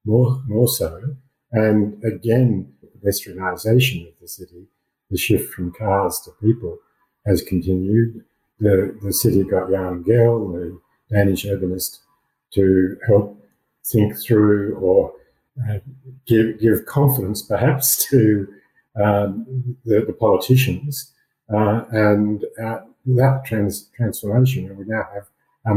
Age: 50-69